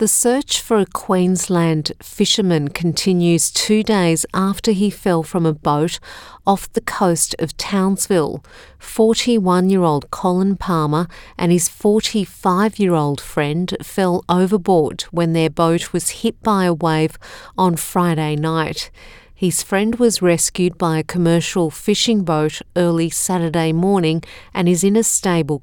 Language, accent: English, Australian